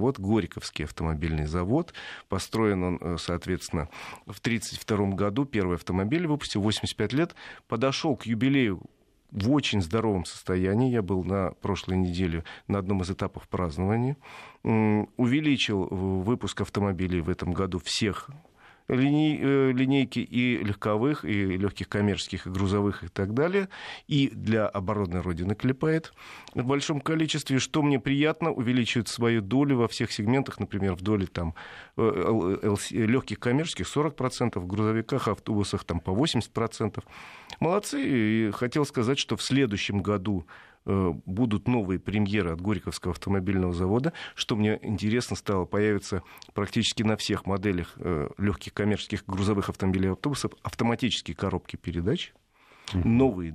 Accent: native